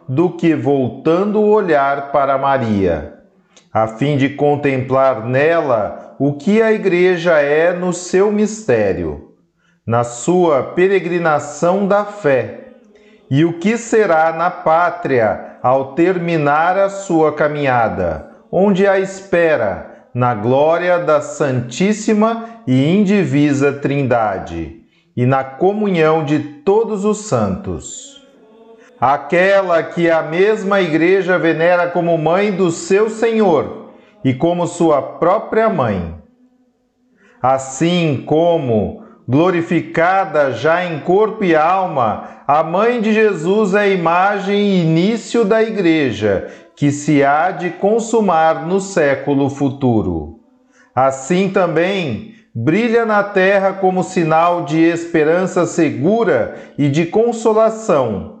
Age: 40-59